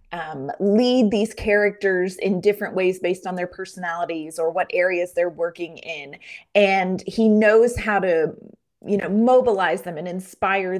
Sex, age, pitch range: female, 30-49, 180-230 Hz